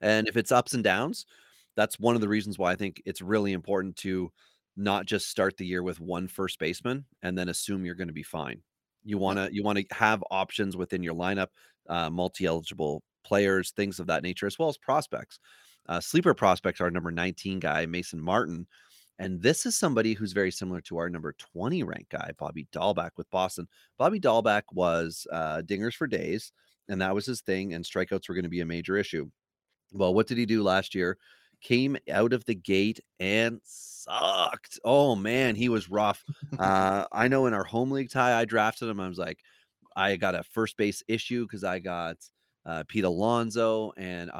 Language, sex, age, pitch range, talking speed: English, male, 30-49, 90-110 Hz, 200 wpm